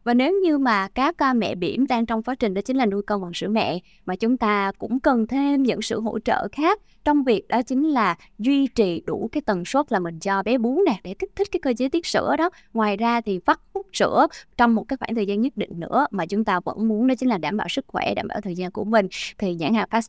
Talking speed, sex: 280 wpm, female